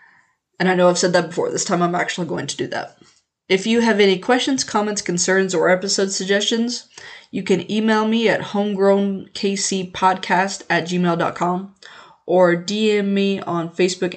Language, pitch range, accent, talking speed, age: English, 175-200 Hz, American, 160 wpm, 20-39